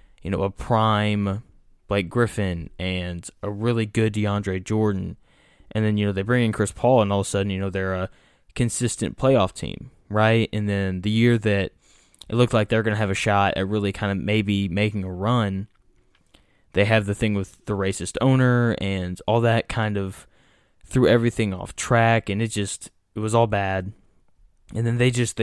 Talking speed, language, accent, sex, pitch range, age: 200 wpm, English, American, male, 100-115 Hz, 10-29